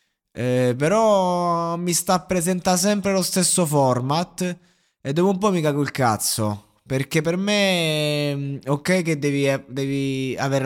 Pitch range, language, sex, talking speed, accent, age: 115-155 Hz, Italian, male, 140 wpm, native, 20-39